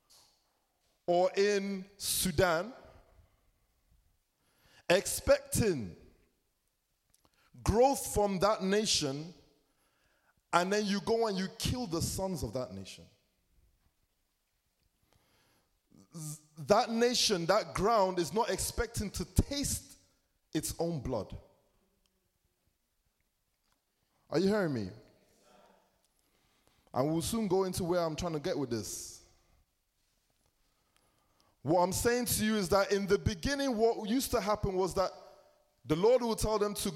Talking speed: 115 wpm